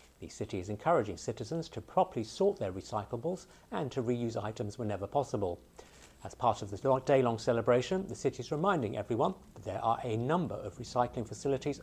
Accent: British